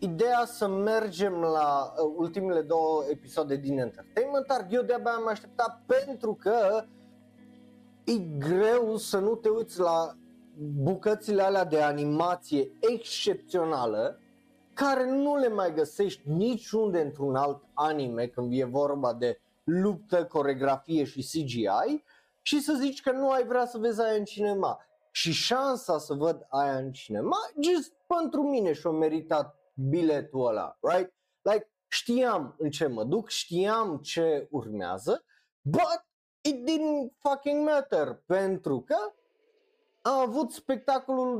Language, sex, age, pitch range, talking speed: Romanian, male, 30-49, 150-250 Hz, 130 wpm